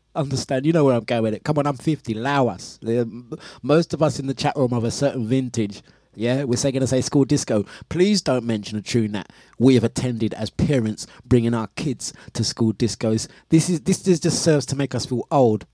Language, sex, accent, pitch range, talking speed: English, male, British, 125-165 Hz, 230 wpm